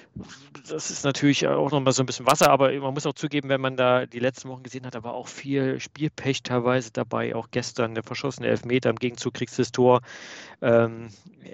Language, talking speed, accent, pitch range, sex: German, 220 wpm, German, 115-135 Hz, male